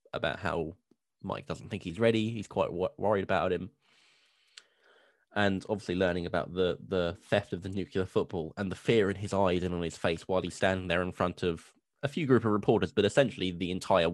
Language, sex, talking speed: English, male, 210 wpm